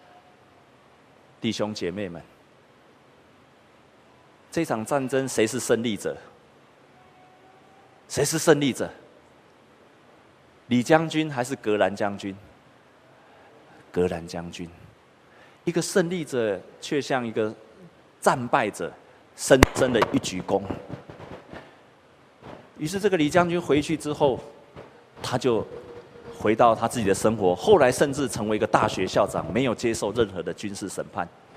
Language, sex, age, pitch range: Chinese, male, 30-49, 115-150 Hz